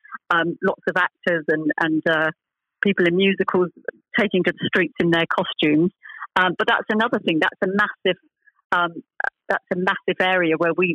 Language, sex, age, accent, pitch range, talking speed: English, female, 40-59, British, 175-215 Hz, 175 wpm